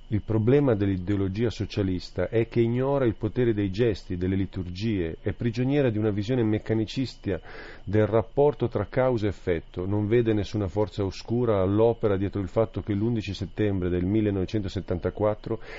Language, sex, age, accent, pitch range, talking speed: Italian, male, 40-59, native, 95-115 Hz, 150 wpm